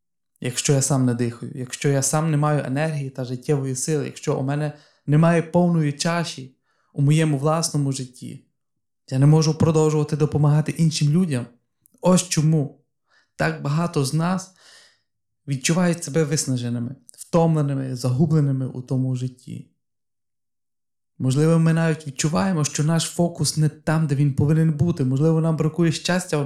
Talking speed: 145 wpm